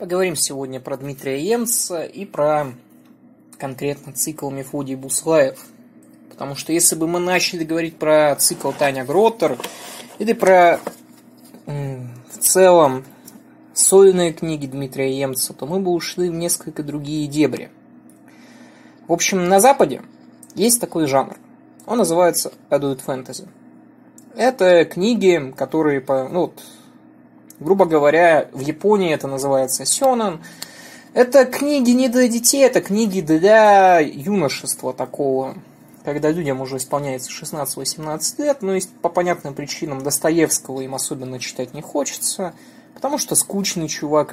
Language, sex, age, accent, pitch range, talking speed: Russian, male, 20-39, native, 140-195 Hz, 125 wpm